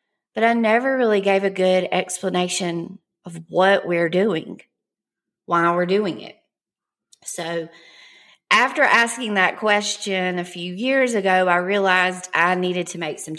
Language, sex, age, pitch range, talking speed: English, female, 30-49, 170-205 Hz, 145 wpm